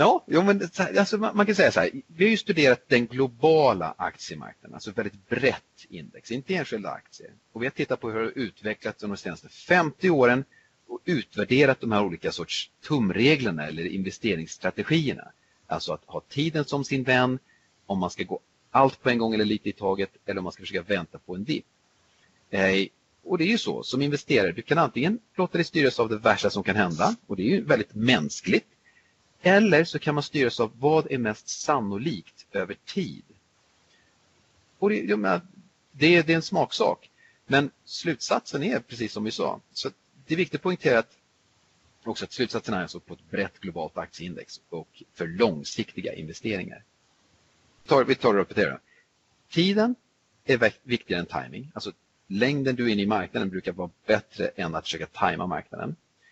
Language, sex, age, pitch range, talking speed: Swedish, male, 40-59, 105-170 Hz, 180 wpm